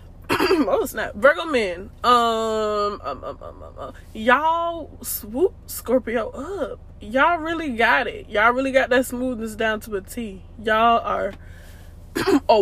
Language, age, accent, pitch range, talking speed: English, 10-29, American, 200-270 Hz, 145 wpm